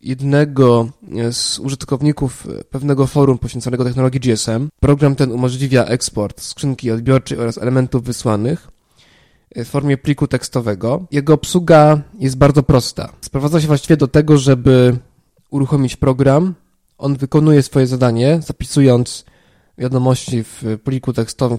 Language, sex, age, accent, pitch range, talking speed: Polish, male, 20-39, native, 125-145 Hz, 120 wpm